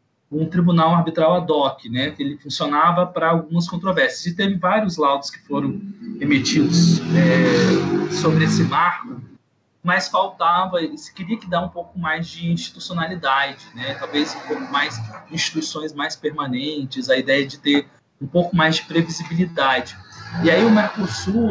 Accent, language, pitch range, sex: Brazilian, Portuguese, 135-175 Hz, male